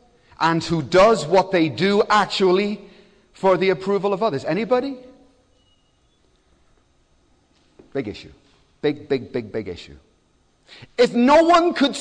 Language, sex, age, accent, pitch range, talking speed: English, male, 40-59, British, 155-225 Hz, 120 wpm